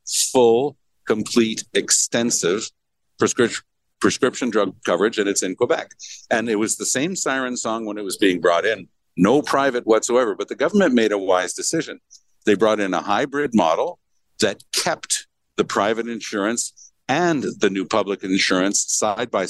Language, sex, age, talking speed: English, male, 60-79, 155 wpm